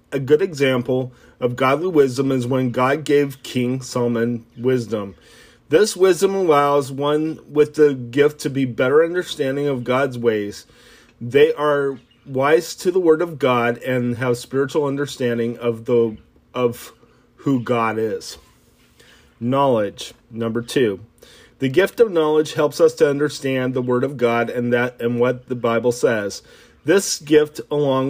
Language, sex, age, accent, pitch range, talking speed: English, male, 30-49, American, 120-150 Hz, 150 wpm